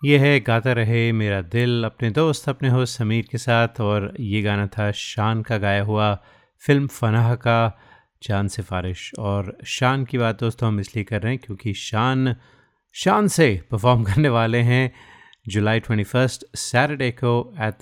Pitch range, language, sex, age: 105-120 Hz, Hindi, male, 30-49